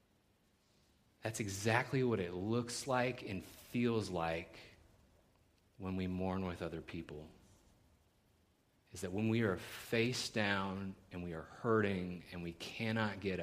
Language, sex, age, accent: English, male, 30-49, American